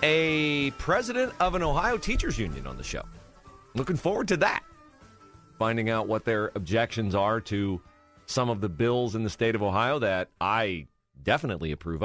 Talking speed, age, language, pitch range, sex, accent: 170 wpm, 40-59, English, 90-125 Hz, male, American